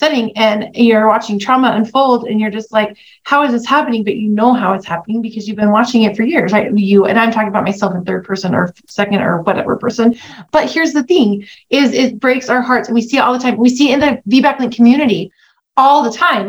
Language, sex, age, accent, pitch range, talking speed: English, female, 30-49, American, 210-245 Hz, 250 wpm